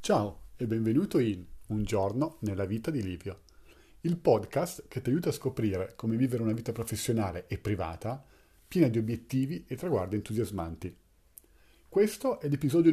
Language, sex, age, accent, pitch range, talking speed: Italian, male, 40-59, native, 105-140 Hz, 155 wpm